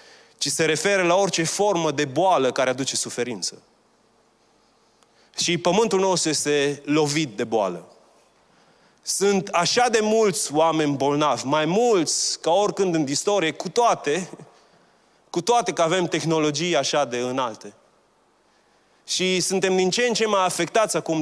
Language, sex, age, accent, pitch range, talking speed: Romanian, male, 30-49, native, 140-185 Hz, 140 wpm